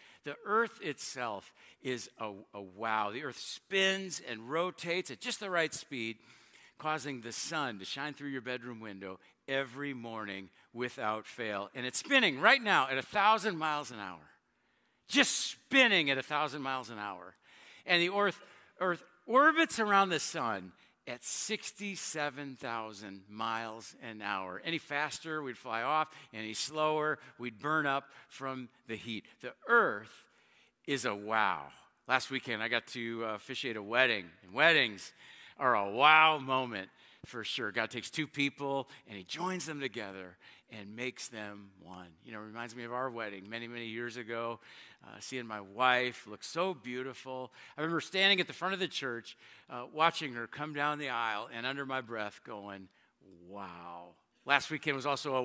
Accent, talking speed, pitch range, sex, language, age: American, 165 wpm, 110-155 Hz, male, English, 50-69